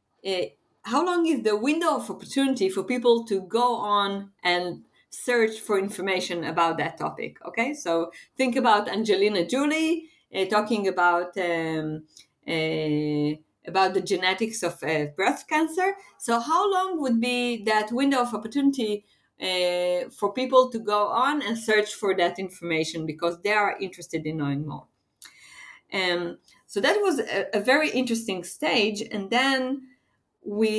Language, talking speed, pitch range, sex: English, 150 wpm, 175-245 Hz, female